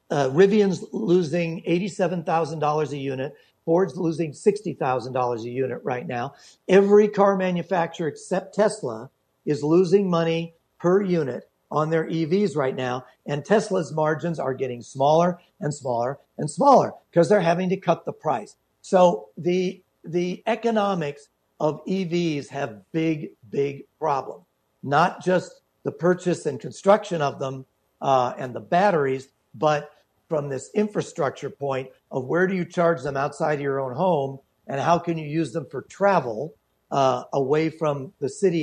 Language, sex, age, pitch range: English, male, 50-69, 145-185 Hz